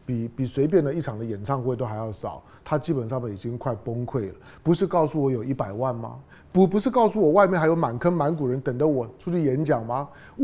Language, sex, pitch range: Chinese, male, 130-205 Hz